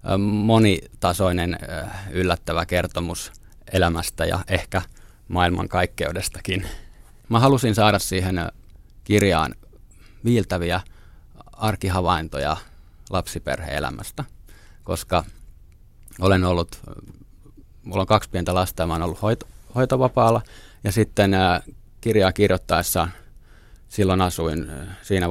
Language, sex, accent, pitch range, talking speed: Finnish, male, native, 90-110 Hz, 85 wpm